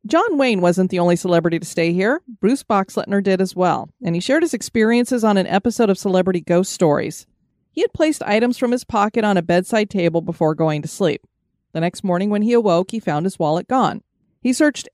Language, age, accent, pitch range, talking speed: English, 30-49, American, 175-225 Hz, 215 wpm